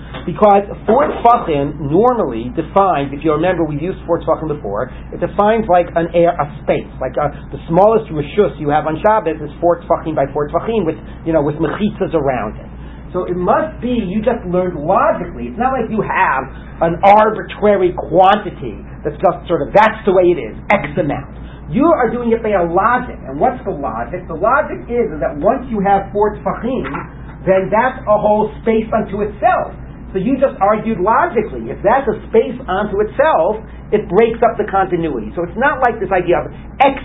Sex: male